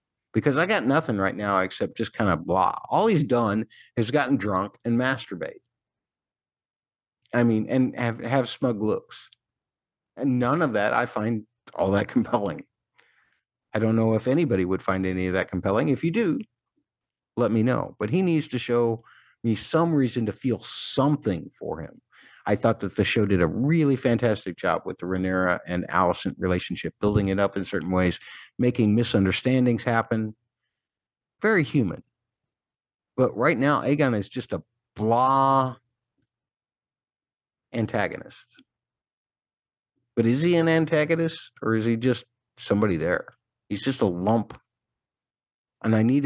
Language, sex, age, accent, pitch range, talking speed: English, male, 50-69, American, 100-125 Hz, 155 wpm